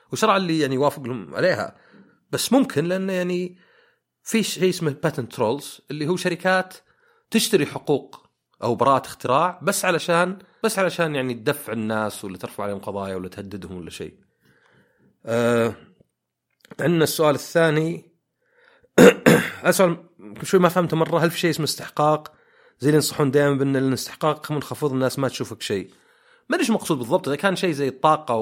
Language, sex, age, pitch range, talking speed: Arabic, male, 30-49, 125-180 Hz, 150 wpm